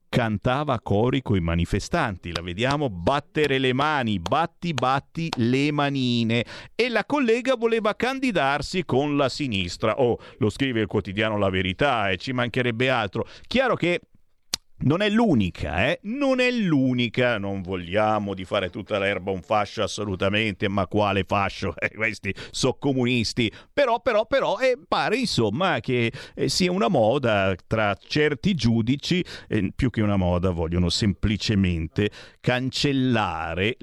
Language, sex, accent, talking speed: Italian, male, native, 140 wpm